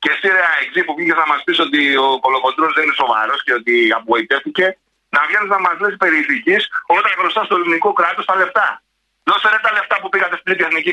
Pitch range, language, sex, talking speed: 195-235 Hz, Greek, male, 215 wpm